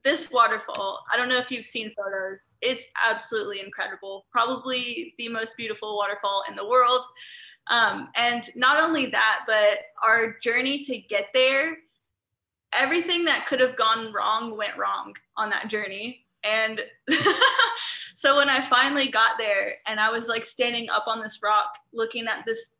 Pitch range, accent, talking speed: 215-255 Hz, American, 160 wpm